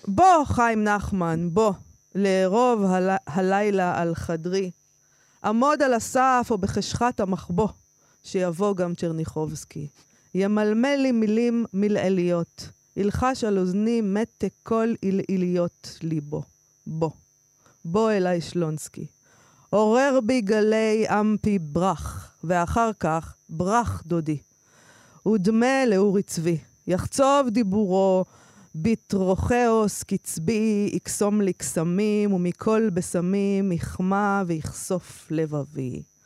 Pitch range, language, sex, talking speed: 170-225 Hz, Hebrew, female, 95 wpm